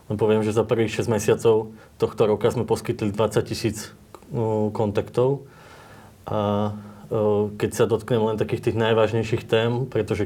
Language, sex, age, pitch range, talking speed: Slovak, male, 20-39, 110-120 Hz, 135 wpm